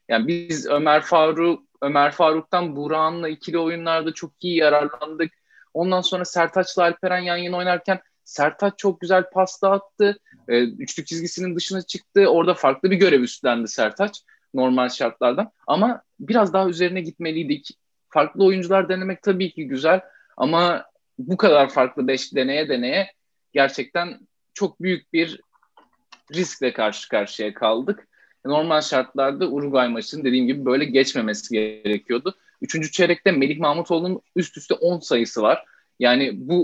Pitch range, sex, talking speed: 135-185 Hz, male, 135 wpm